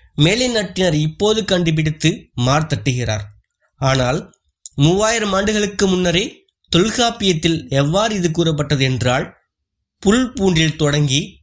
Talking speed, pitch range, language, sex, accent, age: 90 wpm, 130-190 Hz, Tamil, male, native, 20-39